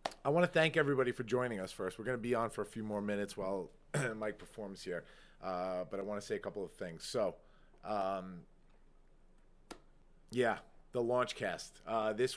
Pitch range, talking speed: 100-125 Hz, 195 wpm